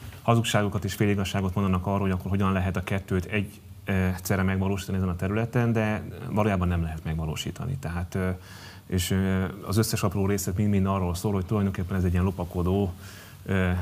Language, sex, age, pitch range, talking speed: Hungarian, male, 30-49, 90-105 Hz, 175 wpm